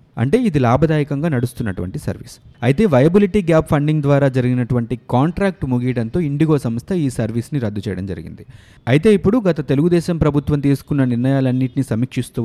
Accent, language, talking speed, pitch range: native, Telugu, 135 wpm, 120-155 Hz